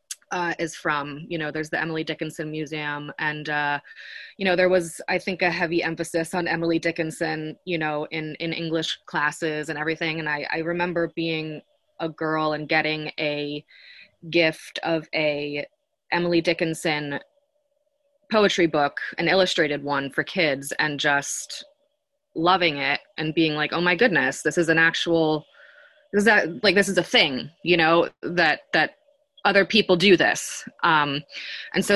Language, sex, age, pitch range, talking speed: English, female, 20-39, 155-195 Hz, 165 wpm